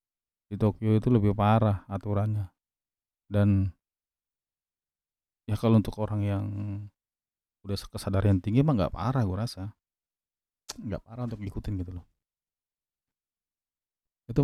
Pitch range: 95-110 Hz